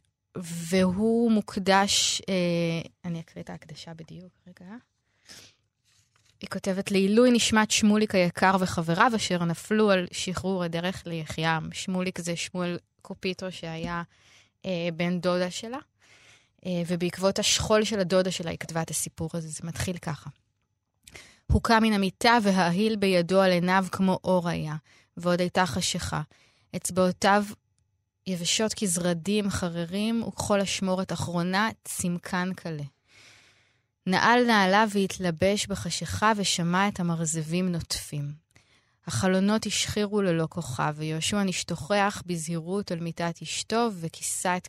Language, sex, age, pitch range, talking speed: Hebrew, female, 20-39, 160-195 Hz, 115 wpm